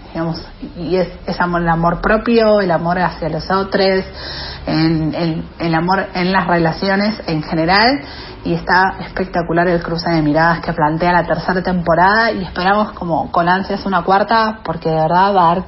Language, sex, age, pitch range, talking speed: Spanish, female, 40-59, 170-200 Hz, 175 wpm